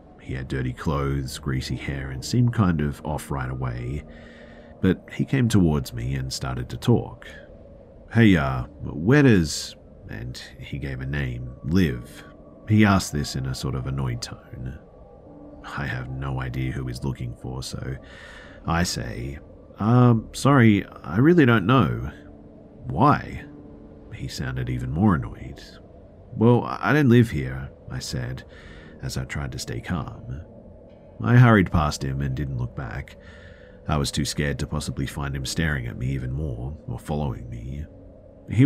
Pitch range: 70-100 Hz